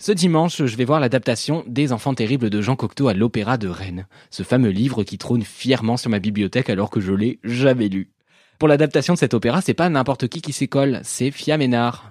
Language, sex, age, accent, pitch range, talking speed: French, male, 20-39, French, 110-155 Hz, 225 wpm